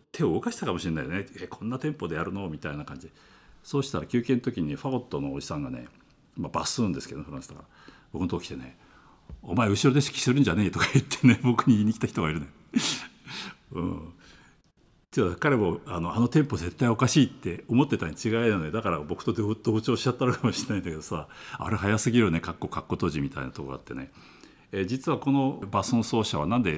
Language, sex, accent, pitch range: Japanese, male, native, 85-130 Hz